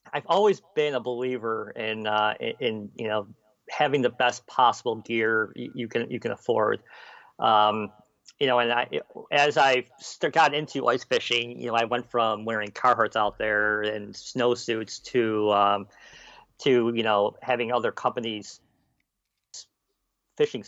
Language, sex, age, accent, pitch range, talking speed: English, male, 40-59, American, 110-135 Hz, 150 wpm